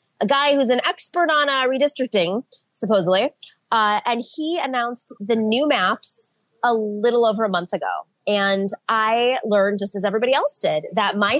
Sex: female